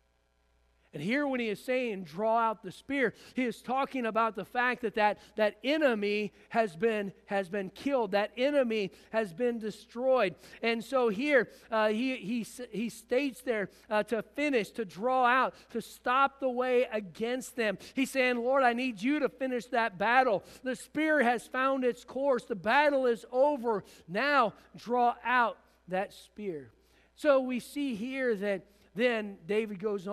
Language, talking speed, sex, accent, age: English, 165 wpm, male, American, 50-69